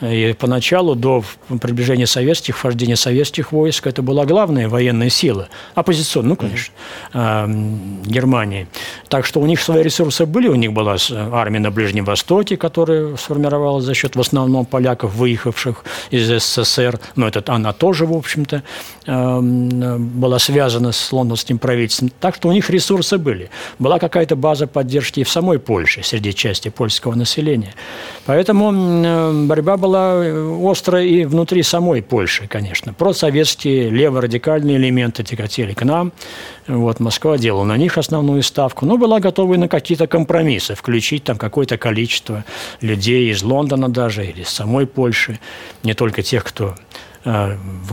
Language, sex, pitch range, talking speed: Russian, male, 115-155 Hz, 140 wpm